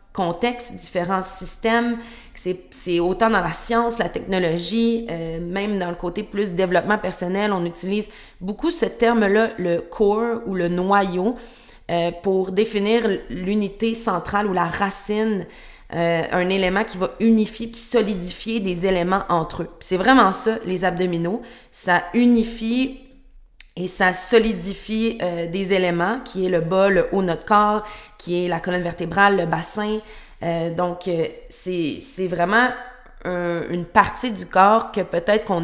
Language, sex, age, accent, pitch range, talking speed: French, female, 30-49, Canadian, 175-225 Hz, 155 wpm